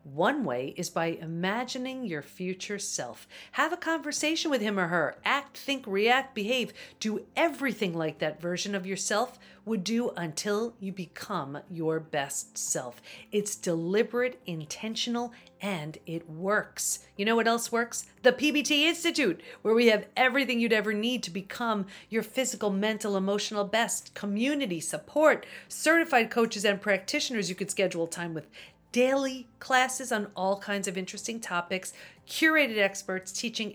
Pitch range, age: 180-240 Hz, 40-59